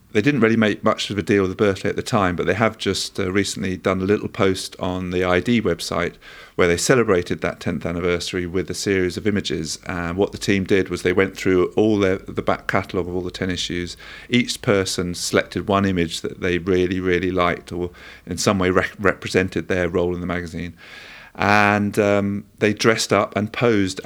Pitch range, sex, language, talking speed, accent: 90-105 Hz, male, English, 215 wpm, British